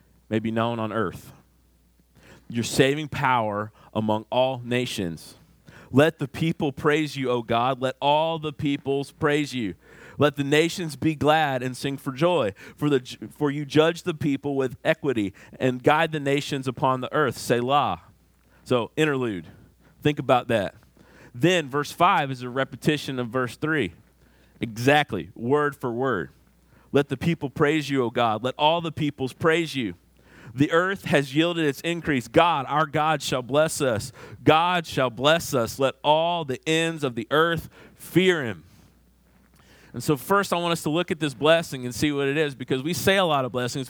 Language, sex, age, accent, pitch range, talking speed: English, male, 40-59, American, 130-165 Hz, 175 wpm